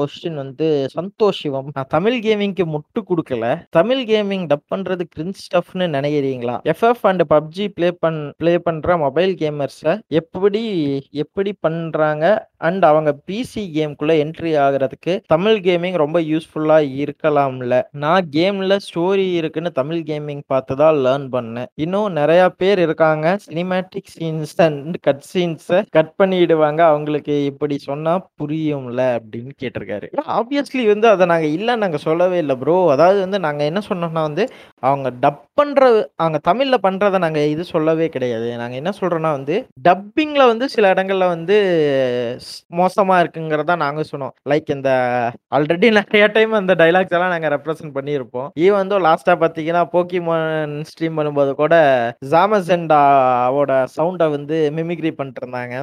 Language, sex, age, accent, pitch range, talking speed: Tamil, male, 20-39, native, 145-185 Hz, 85 wpm